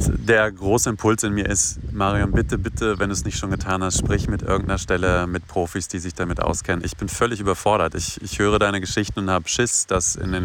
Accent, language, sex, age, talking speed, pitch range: German, German, male, 30-49, 235 wpm, 90-105 Hz